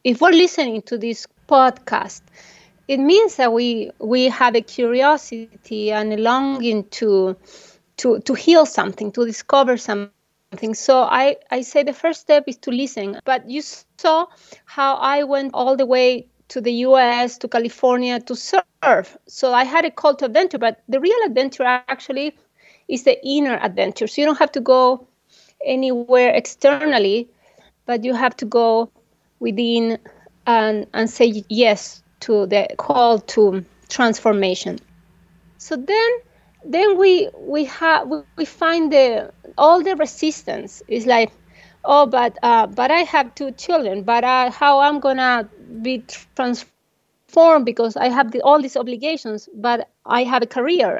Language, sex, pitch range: English, female, 230-285 Hz